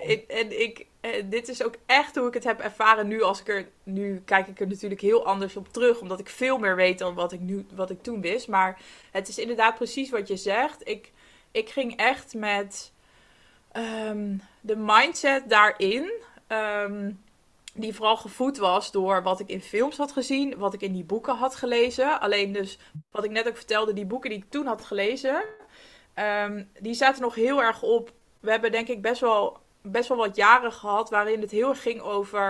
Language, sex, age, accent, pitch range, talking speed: Dutch, female, 20-39, Dutch, 200-245 Hz, 195 wpm